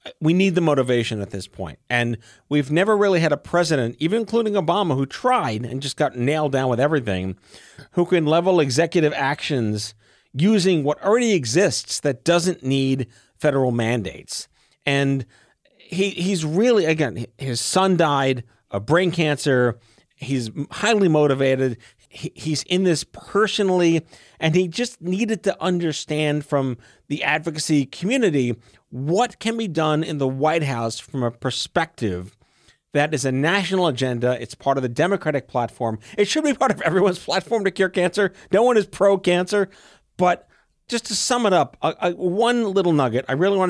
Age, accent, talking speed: 40-59, American, 160 wpm